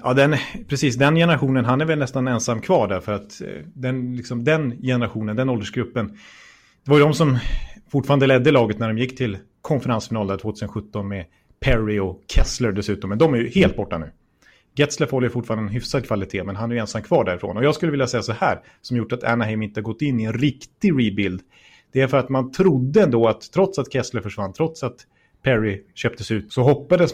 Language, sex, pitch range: Swedish, male, 110-135 Hz